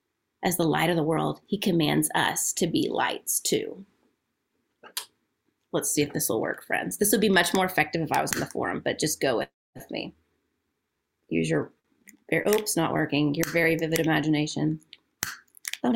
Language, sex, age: English, female, 30-49